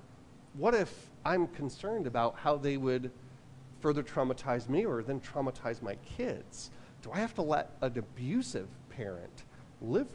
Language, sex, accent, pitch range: English, male, American, 125-155 Hz